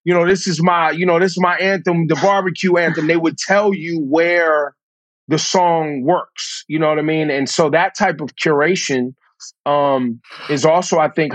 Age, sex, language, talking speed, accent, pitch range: 30-49, male, English, 200 wpm, American, 140-170 Hz